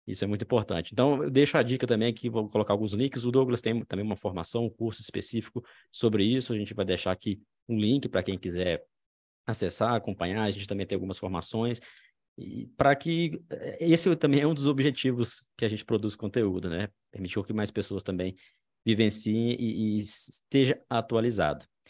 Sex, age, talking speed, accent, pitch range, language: male, 20-39, 185 wpm, Brazilian, 100-125 Hz, Portuguese